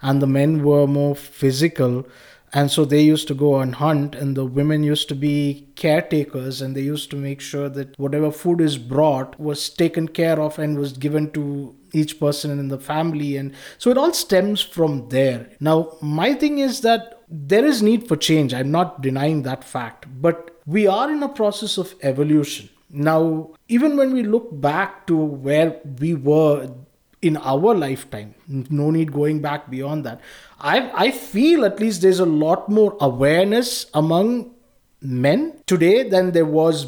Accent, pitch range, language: Indian, 145-190 Hz, English